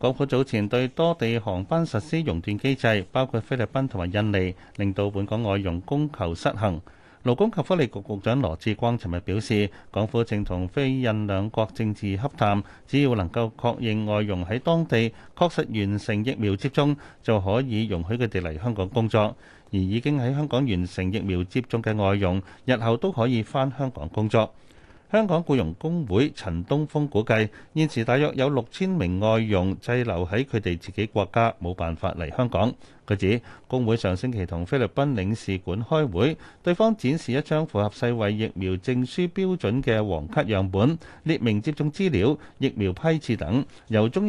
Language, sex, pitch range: Chinese, male, 100-135 Hz